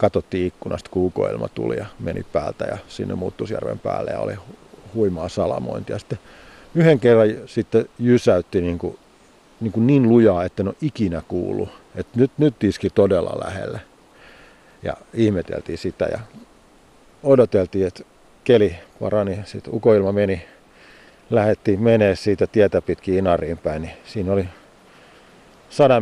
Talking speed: 130 wpm